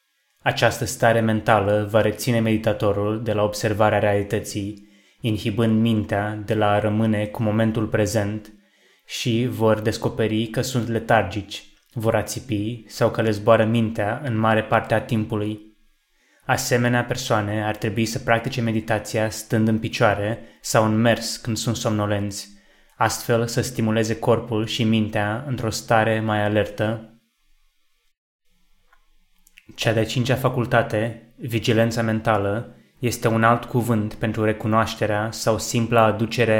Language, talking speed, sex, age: Romanian, 130 wpm, male, 20-39